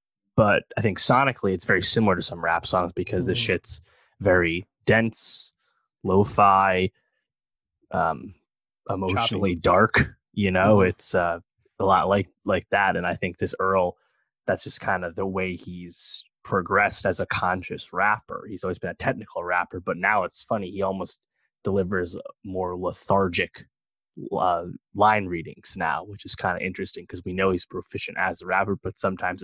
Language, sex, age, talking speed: English, male, 20-39, 165 wpm